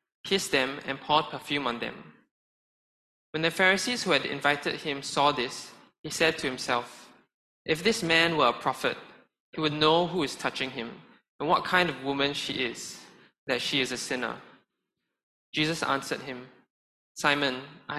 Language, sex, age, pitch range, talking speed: English, male, 20-39, 130-165 Hz, 165 wpm